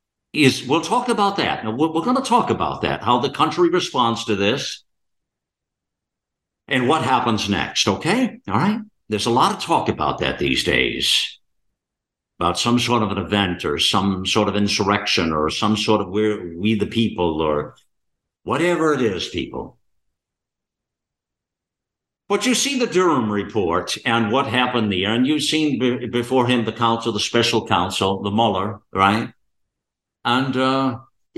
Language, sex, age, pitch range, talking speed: English, male, 60-79, 105-165 Hz, 155 wpm